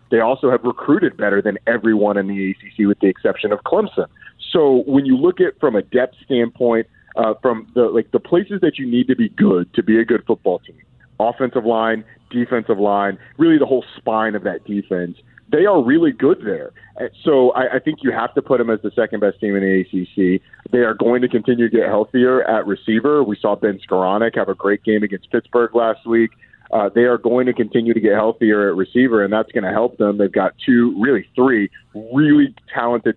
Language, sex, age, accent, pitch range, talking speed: English, male, 30-49, American, 105-130 Hz, 215 wpm